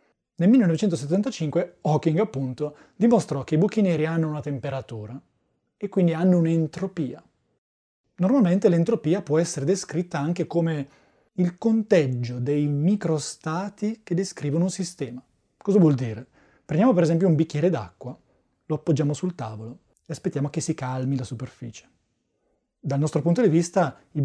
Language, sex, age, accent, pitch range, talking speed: Italian, male, 20-39, native, 140-180 Hz, 140 wpm